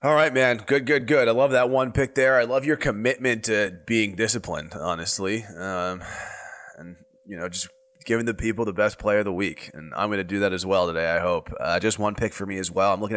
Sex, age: male, 20-39